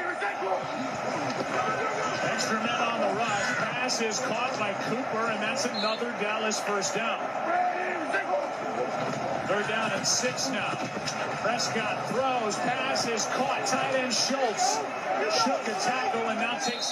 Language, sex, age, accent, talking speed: English, male, 40-59, American, 130 wpm